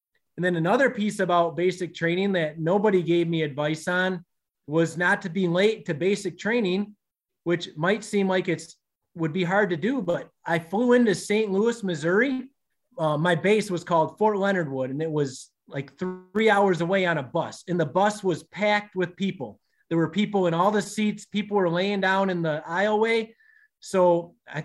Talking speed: 195 wpm